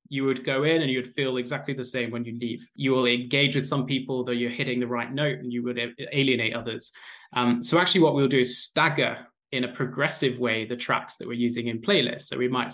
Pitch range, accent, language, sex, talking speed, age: 120-140 Hz, British, English, male, 245 wpm, 20-39